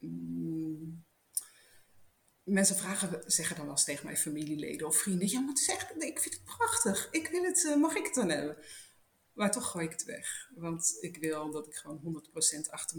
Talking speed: 200 wpm